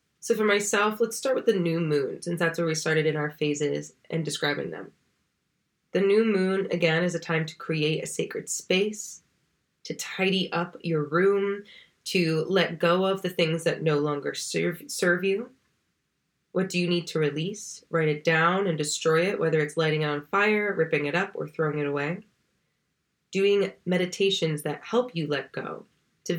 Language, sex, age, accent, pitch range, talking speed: English, female, 20-39, American, 155-185 Hz, 185 wpm